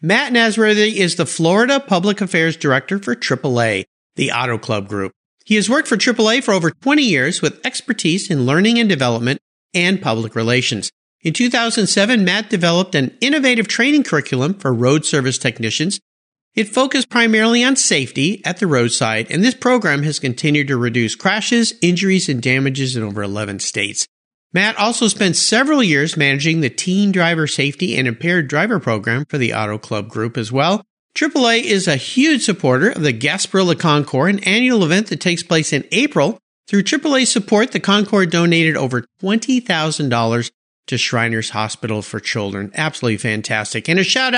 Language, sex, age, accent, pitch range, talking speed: English, male, 50-69, American, 130-215 Hz, 165 wpm